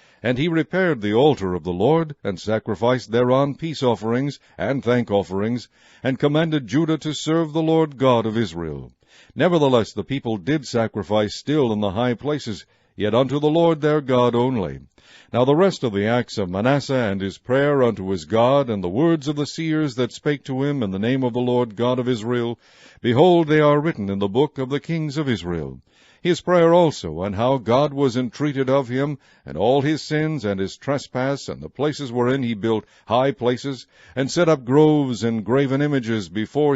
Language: English